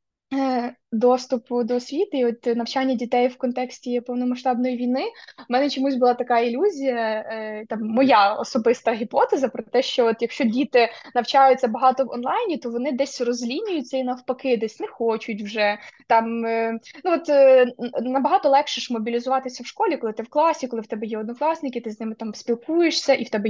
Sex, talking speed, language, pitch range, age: female, 170 wpm, Ukrainian, 240-270 Hz, 20-39